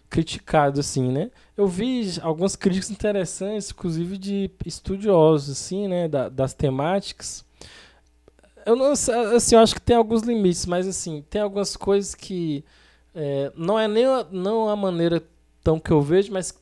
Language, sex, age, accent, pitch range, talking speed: Portuguese, male, 20-39, Brazilian, 145-190 Hz, 165 wpm